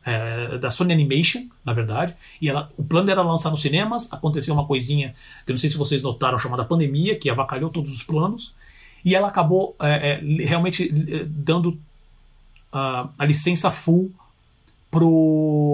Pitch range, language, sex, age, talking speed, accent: 135-170 Hz, Portuguese, male, 40-59, 170 wpm, Brazilian